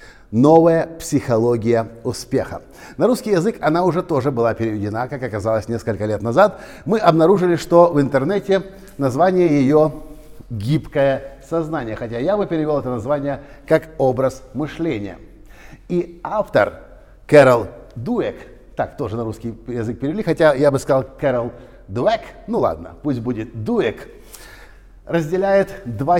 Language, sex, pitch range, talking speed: Russian, male, 115-165 Hz, 130 wpm